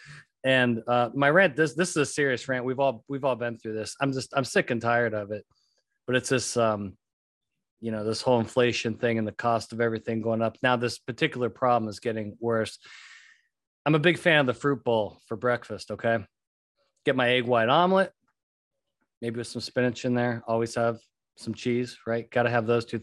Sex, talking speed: male, 210 wpm